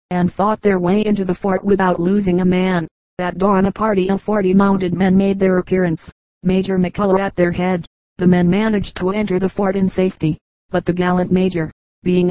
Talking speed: 200 wpm